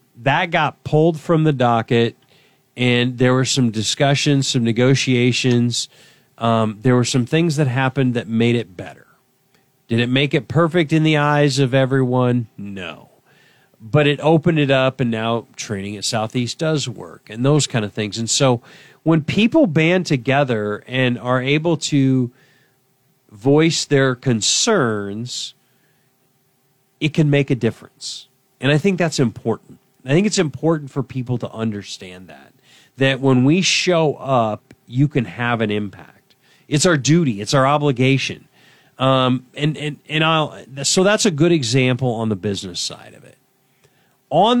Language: English